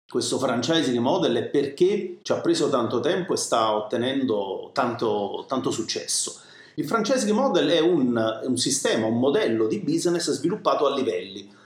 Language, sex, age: Italian, male, 40-59